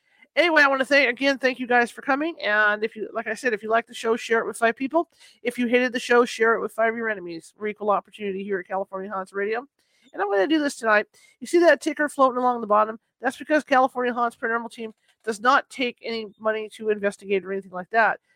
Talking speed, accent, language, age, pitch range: 260 wpm, American, English, 40-59, 210-255 Hz